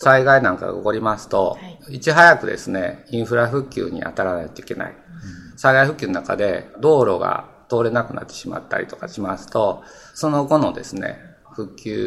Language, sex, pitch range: Japanese, male, 115-155 Hz